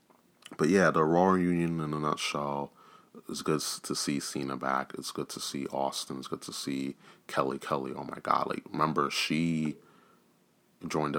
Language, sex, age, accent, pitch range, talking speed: English, male, 30-49, American, 65-75 Hz, 170 wpm